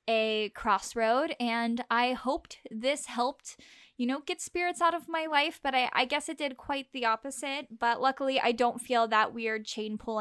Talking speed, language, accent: 195 wpm, English, American